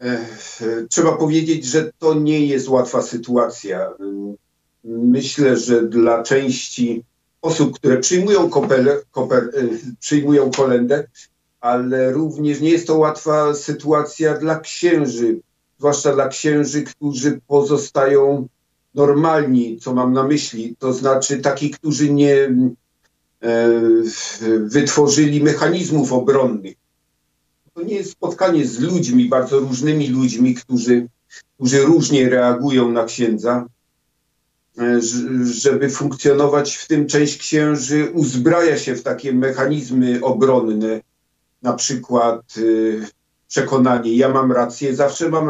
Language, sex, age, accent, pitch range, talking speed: Polish, male, 50-69, native, 120-145 Hz, 105 wpm